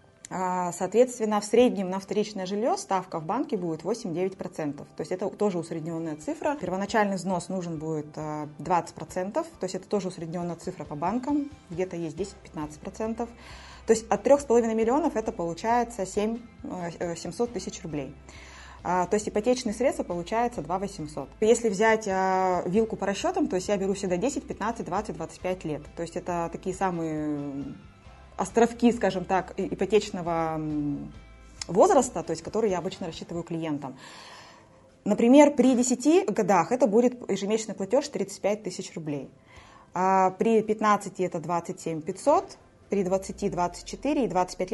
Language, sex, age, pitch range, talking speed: Russian, female, 20-39, 170-220 Hz, 135 wpm